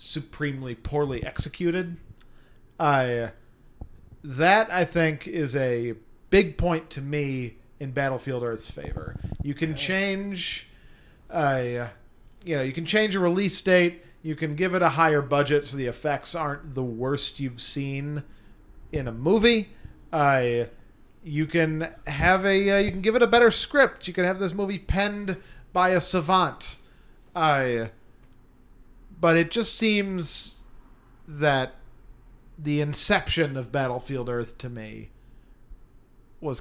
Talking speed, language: 145 wpm, English